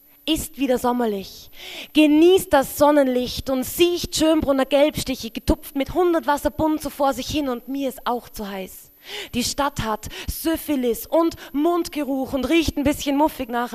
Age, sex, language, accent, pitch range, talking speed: 20-39, female, German, German, 245-300 Hz, 155 wpm